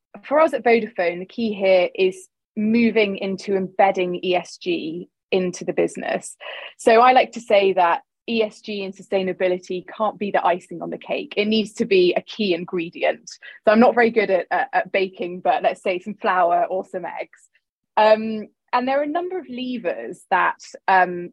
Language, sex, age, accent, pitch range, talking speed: English, female, 20-39, British, 185-245 Hz, 185 wpm